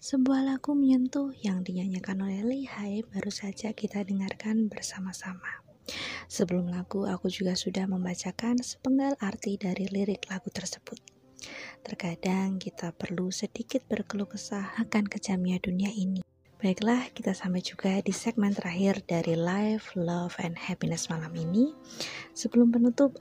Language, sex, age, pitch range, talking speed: Indonesian, female, 20-39, 180-215 Hz, 125 wpm